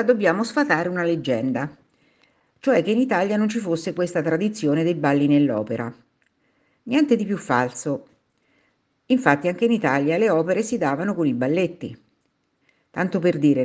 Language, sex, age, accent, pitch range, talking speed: Italian, female, 50-69, native, 150-230 Hz, 150 wpm